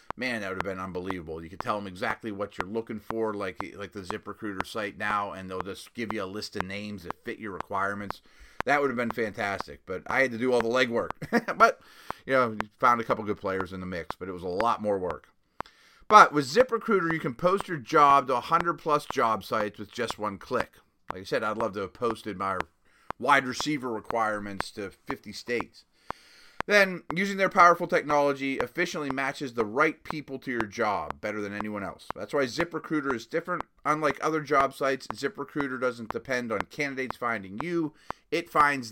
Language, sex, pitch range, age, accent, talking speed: English, male, 110-155 Hz, 30-49, American, 200 wpm